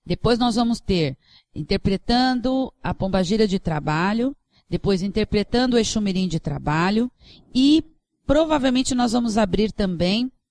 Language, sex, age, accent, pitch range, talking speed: Portuguese, female, 40-59, Brazilian, 175-215 Hz, 120 wpm